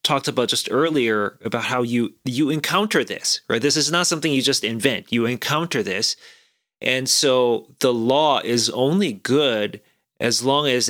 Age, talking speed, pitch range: 30-49, 170 wpm, 115-145 Hz